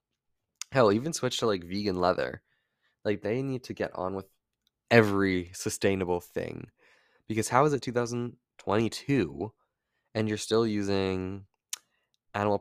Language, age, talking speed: English, 20-39, 130 wpm